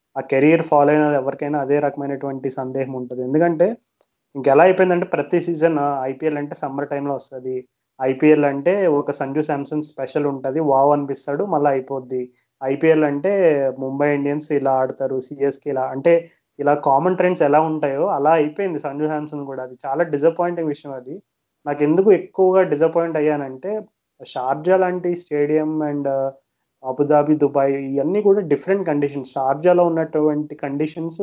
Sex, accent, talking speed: male, native, 140 wpm